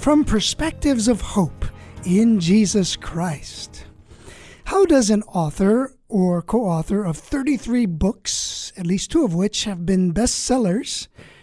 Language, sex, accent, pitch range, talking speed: English, male, American, 180-245 Hz, 125 wpm